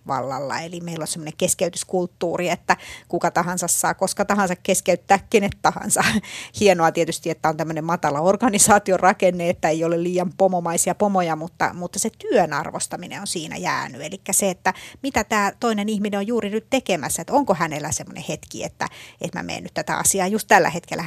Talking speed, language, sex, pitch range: 175 wpm, Finnish, female, 165-200 Hz